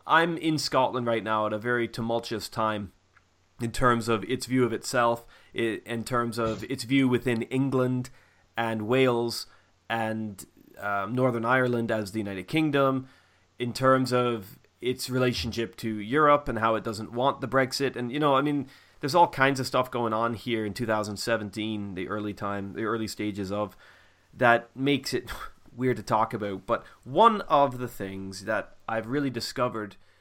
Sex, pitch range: male, 105-130 Hz